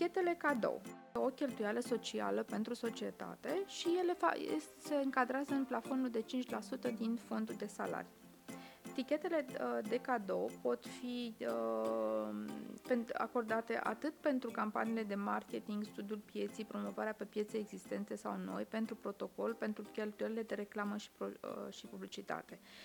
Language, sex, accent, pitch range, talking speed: Romanian, female, native, 205-265 Hz, 120 wpm